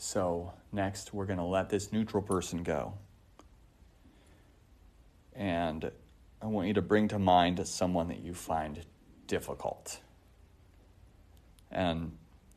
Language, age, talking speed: English, 30-49, 115 wpm